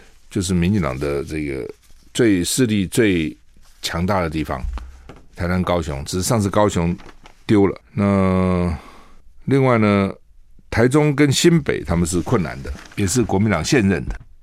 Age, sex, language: 50-69, male, Chinese